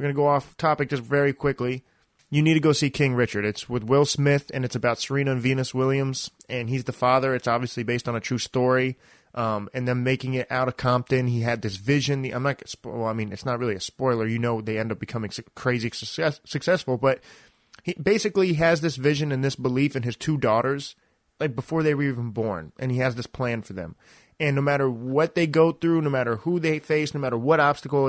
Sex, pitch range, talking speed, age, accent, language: male, 120-150 Hz, 235 wpm, 30-49, American, English